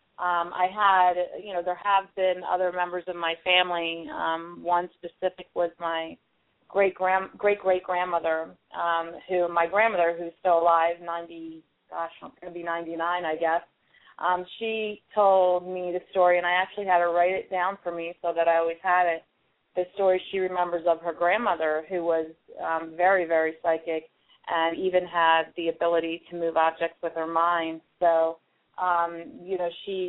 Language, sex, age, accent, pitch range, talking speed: English, female, 30-49, American, 165-180 Hz, 175 wpm